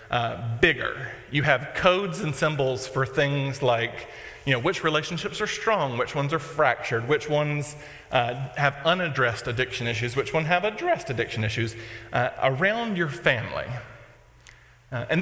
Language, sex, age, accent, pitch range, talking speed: English, male, 40-59, American, 125-155 Hz, 155 wpm